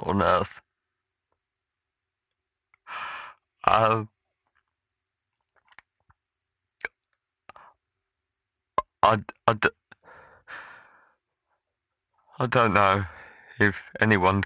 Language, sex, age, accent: English, male, 50-69, British